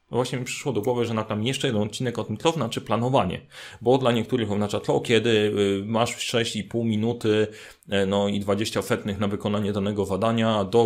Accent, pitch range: native, 105-125 Hz